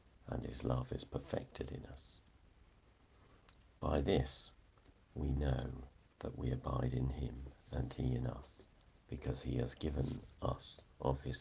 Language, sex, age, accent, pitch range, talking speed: English, male, 50-69, British, 65-95 Hz, 140 wpm